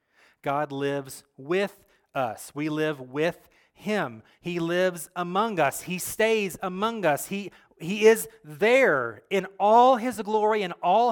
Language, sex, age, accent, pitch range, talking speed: English, male, 30-49, American, 155-200 Hz, 140 wpm